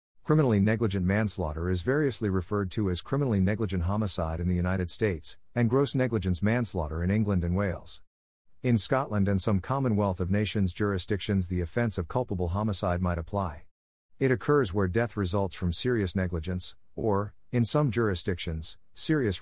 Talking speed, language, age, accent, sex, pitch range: 160 wpm, English, 50-69, American, male, 90-115 Hz